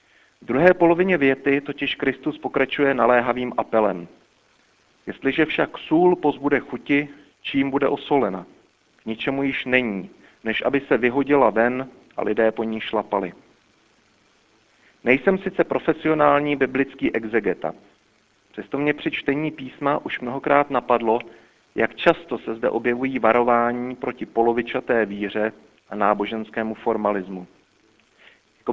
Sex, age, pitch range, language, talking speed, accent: male, 40-59, 115-140 Hz, Czech, 120 wpm, native